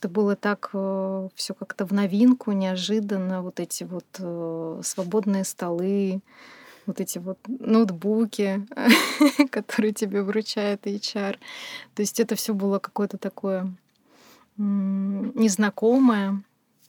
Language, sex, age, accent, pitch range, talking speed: Russian, female, 20-39, native, 190-220 Hz, 105 wpm